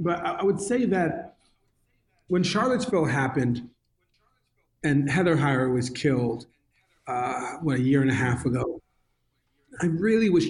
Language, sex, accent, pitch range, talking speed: English, male, American, 140-165 Hz, 135 wpm